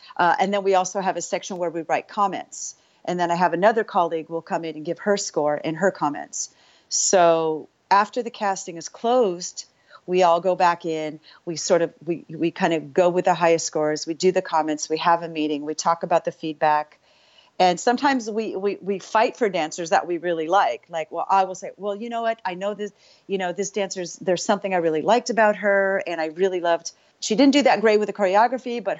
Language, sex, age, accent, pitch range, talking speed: English, female, 40-59, American, 160-200 Hz, 230 wpm